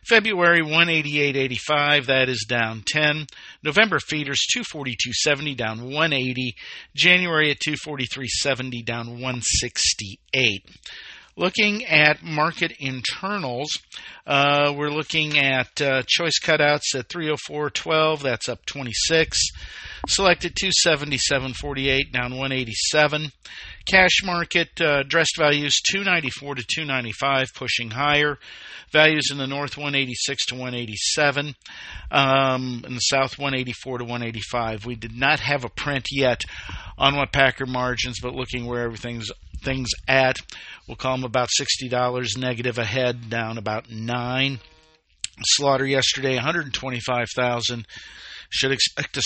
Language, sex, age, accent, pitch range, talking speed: English, male, 50-69, American, 125-155 Hz, 120 wpm